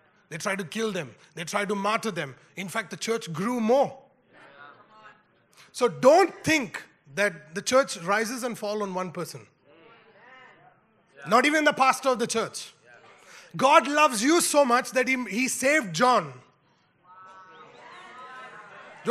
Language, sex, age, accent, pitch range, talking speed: English, male, 30-49, Indian, 205-295 Hz, 145 wpm